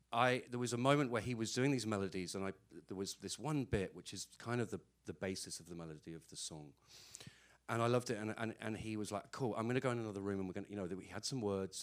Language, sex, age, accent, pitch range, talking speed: English, male, 40-59, British, 90-115 Hz, 290 wpm